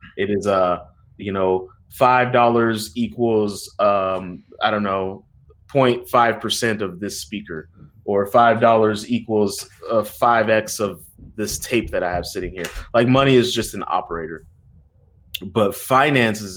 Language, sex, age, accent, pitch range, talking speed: English, male, 20-39, American, 95-115 Hz, 130 wpm